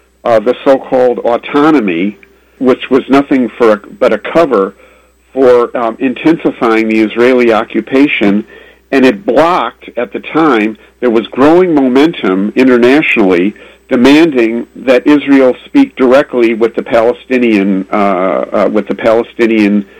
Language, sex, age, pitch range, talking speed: Arabic, male, 50-69, 105-130 Hz, 125 wpm